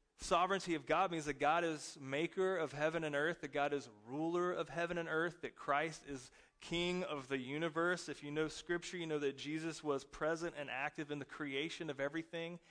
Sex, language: male, English